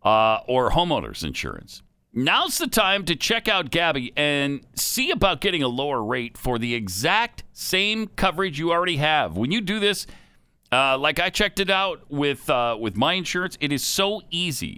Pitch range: 115-170 Hz